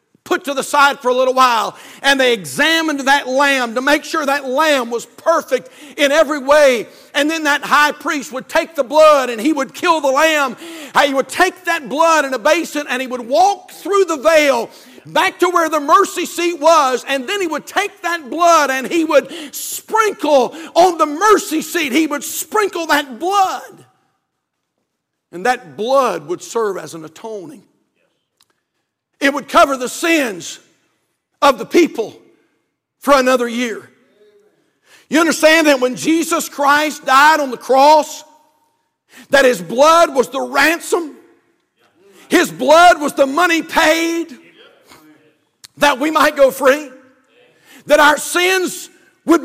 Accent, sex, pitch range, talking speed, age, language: American, male, 270-335 Hz, 160 wpm, 60-79, English